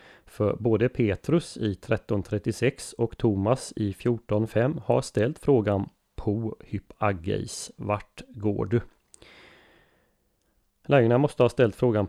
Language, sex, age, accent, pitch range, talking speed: Swedish, male, 30-49, native, 100-120 Hz, 110 wpm